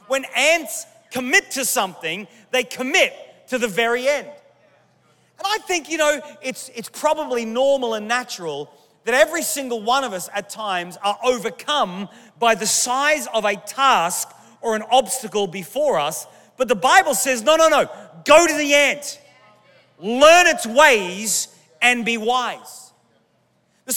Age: 30-49